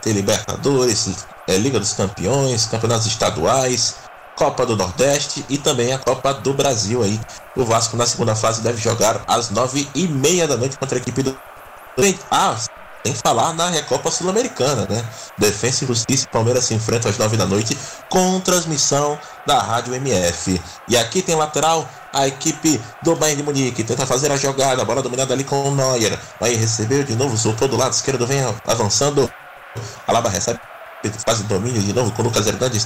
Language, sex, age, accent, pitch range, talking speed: Portuguese, male, 20-39, Brazilian, 115-145 Hz, 175 wpm